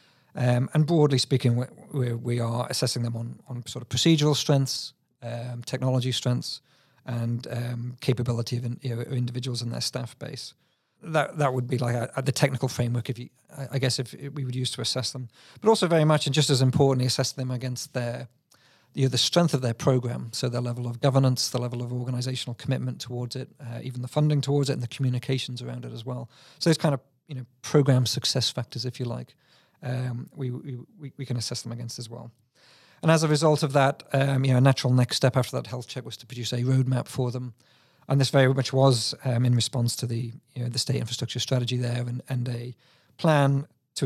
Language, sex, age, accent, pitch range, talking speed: English, male, 40-59, British, 125-140 Hz, 220 wpm